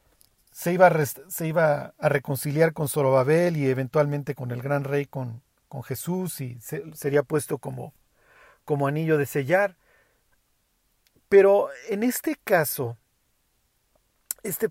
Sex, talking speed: male, 130 wpm